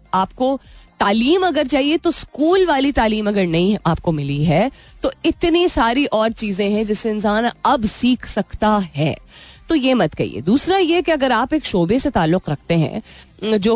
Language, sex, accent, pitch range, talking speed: Hindi, female, native, 180-255 Hz, 180 wpm